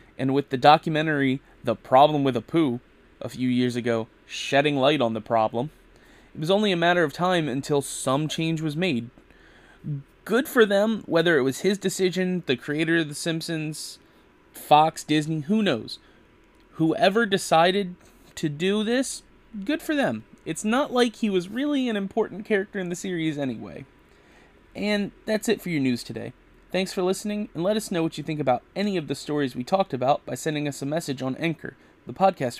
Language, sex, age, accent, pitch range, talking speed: English, male, 30-49, American, 125-185 Hz, 190 wpm